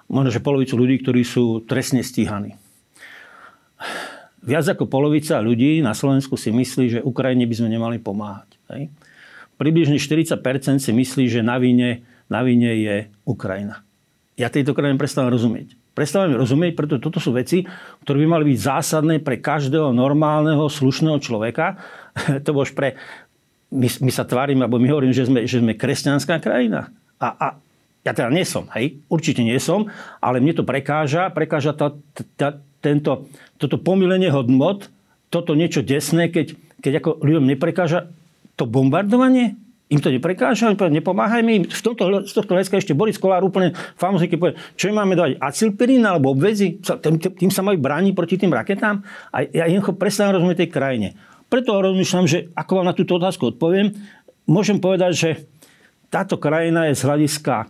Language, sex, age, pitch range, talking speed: Slovak, male, 50-69, 130-180 Hz, 160 wpm